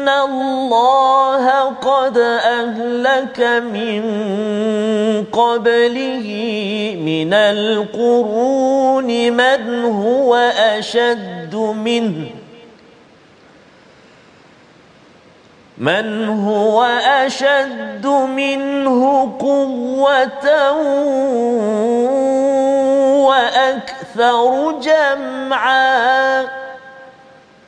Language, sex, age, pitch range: Malayalam, male, 40-59, 230-275 Hz